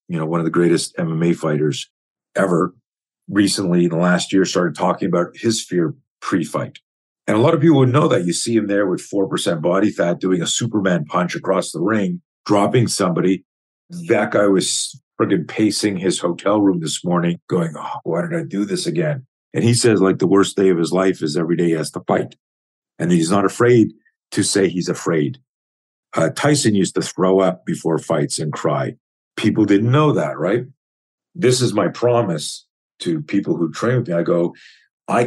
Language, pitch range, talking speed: English, 90-135 Hz, 195 wpm